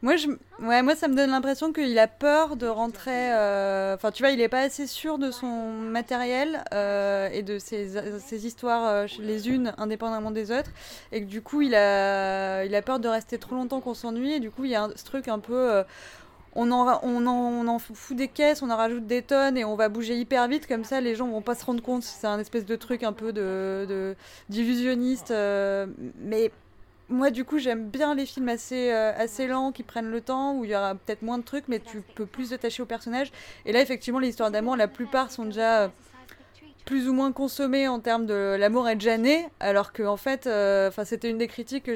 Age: 20-39